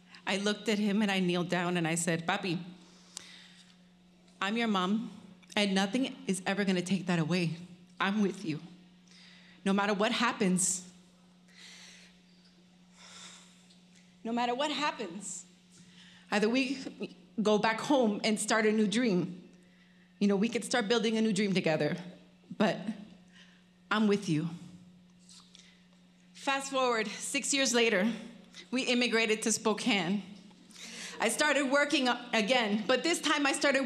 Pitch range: 180-235 Hz